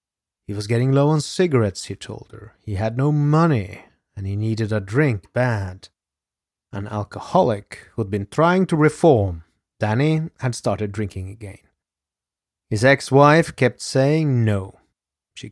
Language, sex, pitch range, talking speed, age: English, male, 100-130 Hz, 145 wpm, 30-49